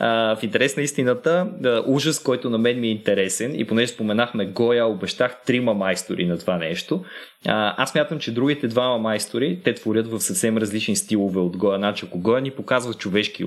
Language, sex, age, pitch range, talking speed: Bulgarian, male, 20-39, 105-120 Hz, 195 wpm